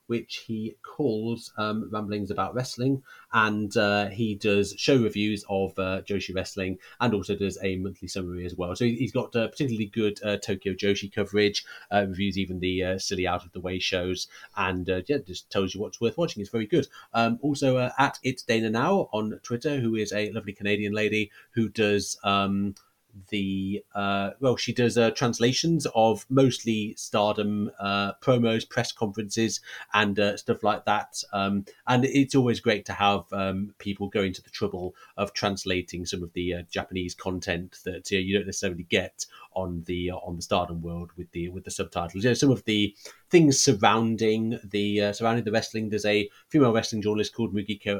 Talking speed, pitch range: 195 wpm, 95-115 Hz